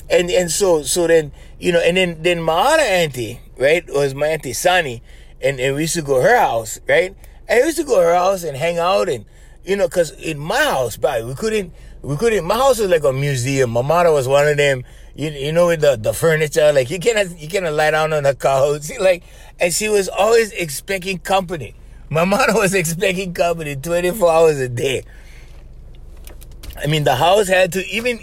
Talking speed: 220 wpm